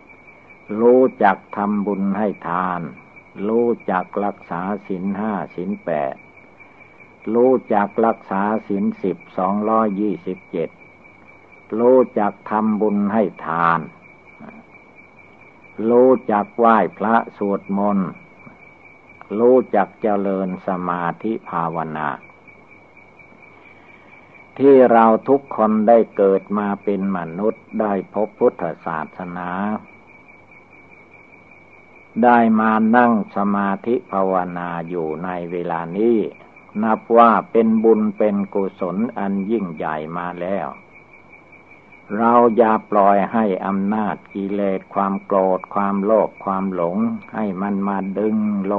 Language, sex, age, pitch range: Thai, male, 60-79, 95-110 Hz